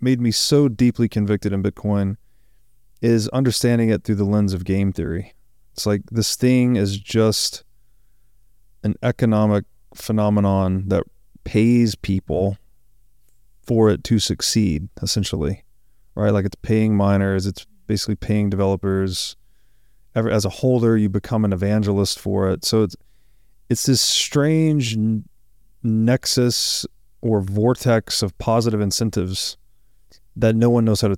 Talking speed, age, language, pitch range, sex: 135 wpm, 30-49, English, 95-115 Hz, male